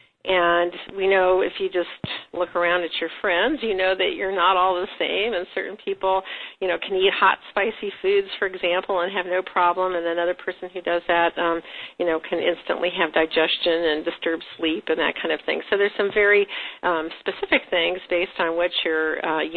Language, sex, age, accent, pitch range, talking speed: English, female, 50-69, American, 175-200 Hz, 210 wpm